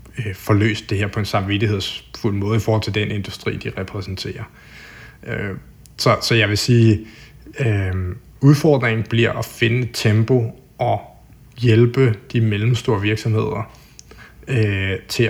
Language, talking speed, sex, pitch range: Danish, 115 wpm, male, 105-120 Hz